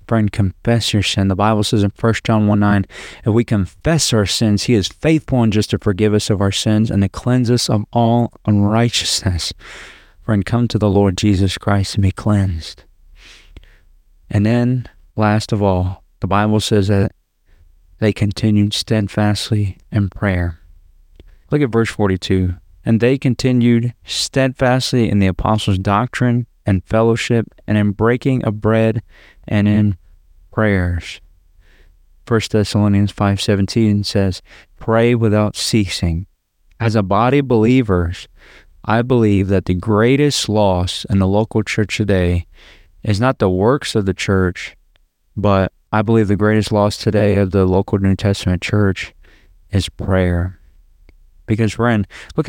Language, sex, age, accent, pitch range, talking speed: English, male, 30-49, American, 90-110 Hz, 150 wpm